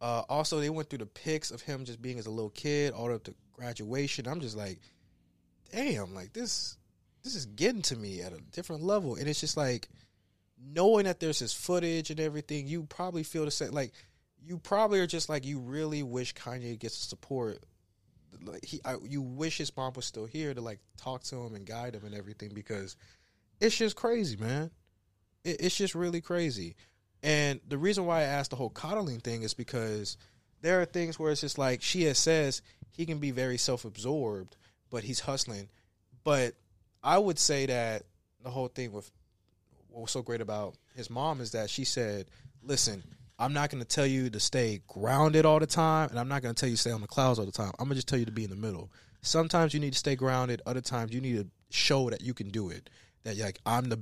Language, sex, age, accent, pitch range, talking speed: English, male, 20-39, American, 105-150 Hz, 225 wpm